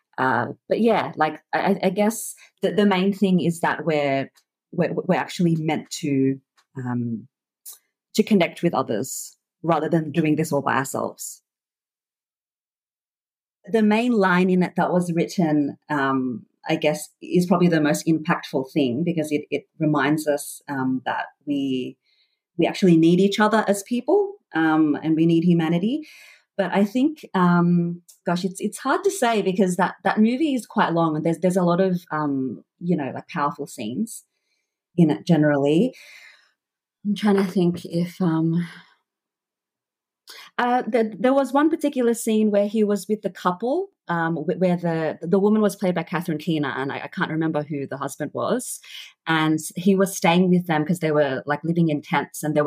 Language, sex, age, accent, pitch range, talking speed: English, female, 40-59, Australian, 150-200 Hz, 175 wpm